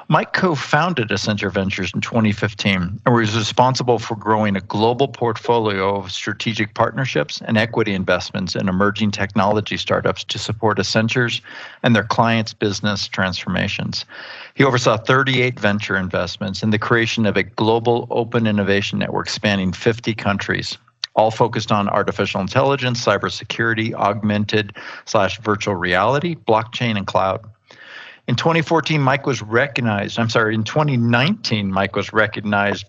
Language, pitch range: English, 100-120 Hz